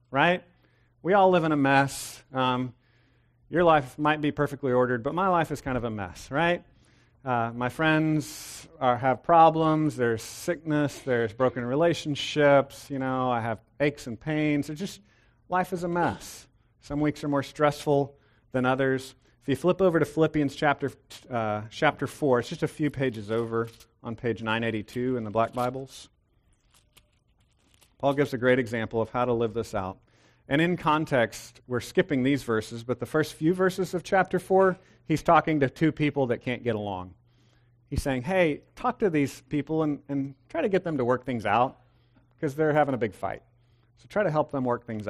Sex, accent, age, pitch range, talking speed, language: male, American, 40-59, 120-155 Hz, 190 wpm, English